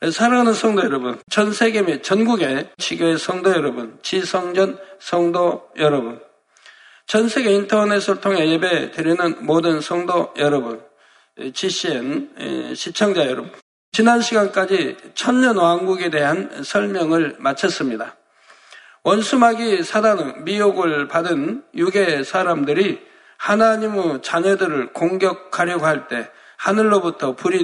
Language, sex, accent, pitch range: Korean, male, native, 155-215 Hz